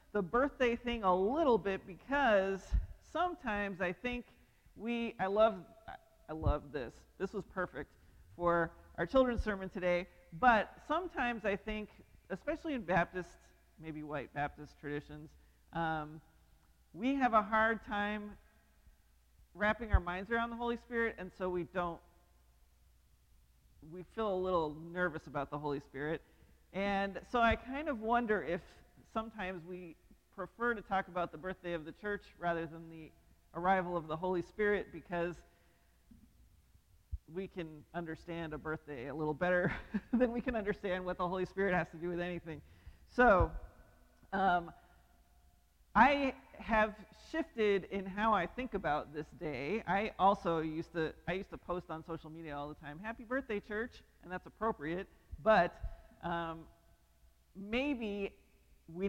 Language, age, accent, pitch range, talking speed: English, 40-59, American, 155-210 Hz, 145 wpm